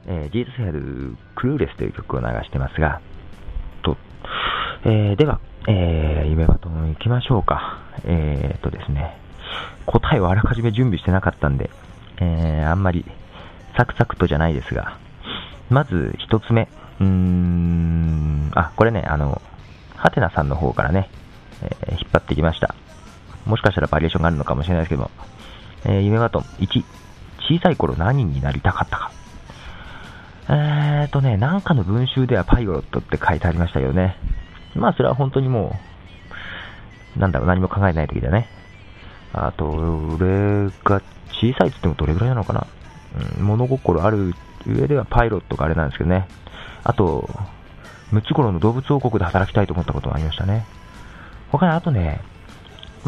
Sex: male